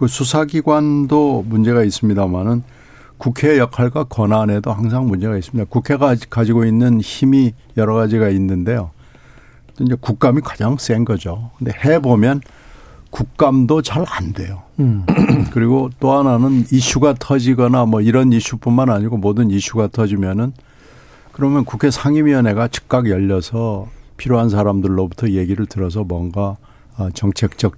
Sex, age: male, 60-79